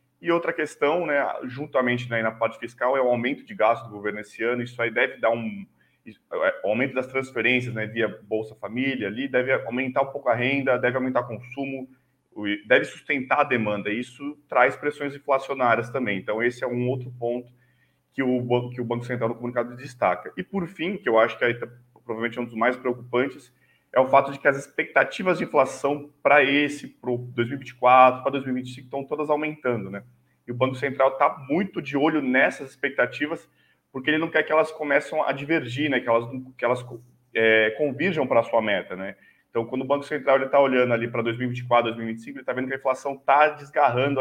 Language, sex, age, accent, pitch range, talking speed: Portuguese, male, 20-39, Brazilian, 120-140 Hz, 205 wpm